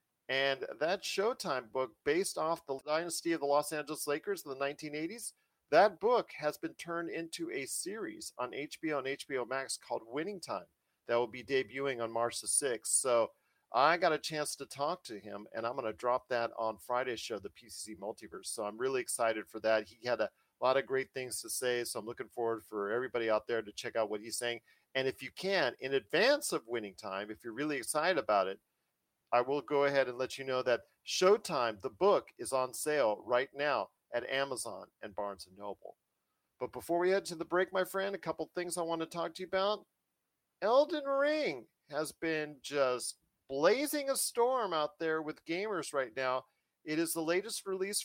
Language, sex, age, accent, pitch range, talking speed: English, male, 40-59, American, 125-175 Hz, 205 wpm